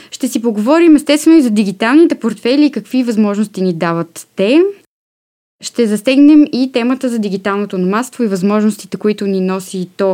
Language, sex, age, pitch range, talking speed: Bulgarian, female, 20-39, 190-260 Hz, 160 wpm